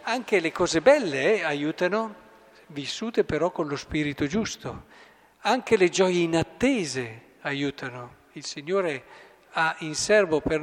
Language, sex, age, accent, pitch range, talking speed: Italian, male, 50-69, native, 140-180 Hz, 130 wpm